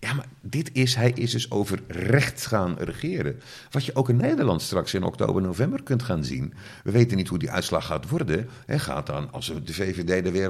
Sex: male